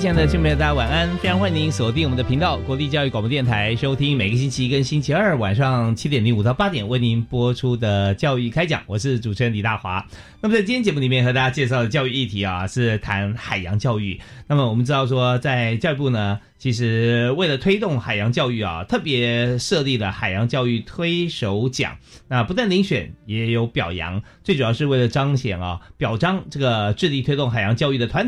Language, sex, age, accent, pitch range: Chinese, male, 30-49, native, 105-135 Hz